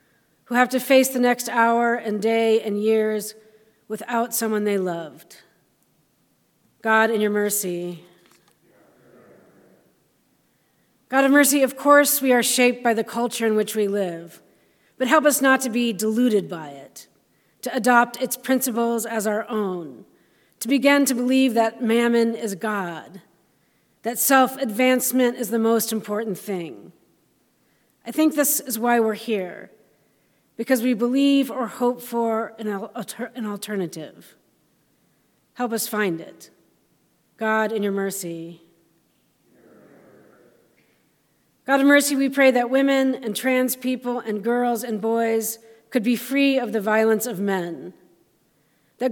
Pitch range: 210-250 Hz